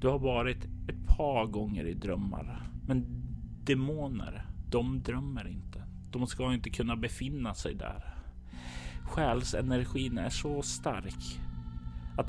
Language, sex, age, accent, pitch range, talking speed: Swedish, male, 30-49, native, 90-120 Hz, 120 wpm